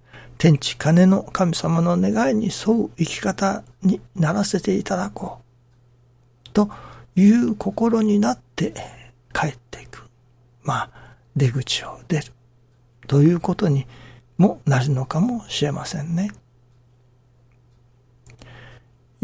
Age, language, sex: 60-79, Japanese, male